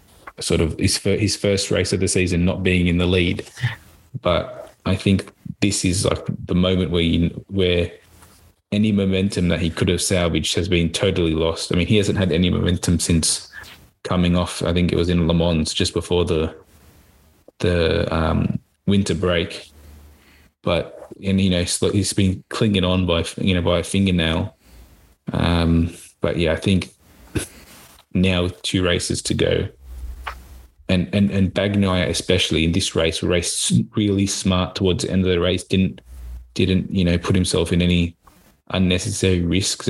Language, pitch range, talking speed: English, 85-95 Hz, 170 wpm